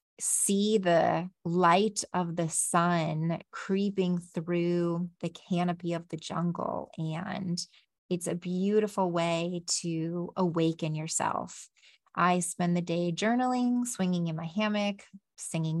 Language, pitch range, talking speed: English, 170-195 Hz, 120 wpm